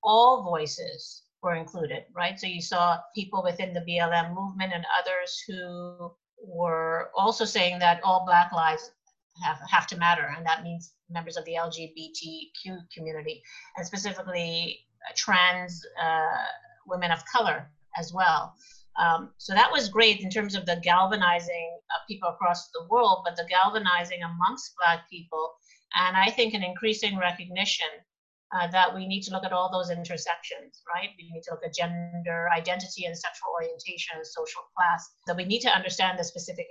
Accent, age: American, 50-69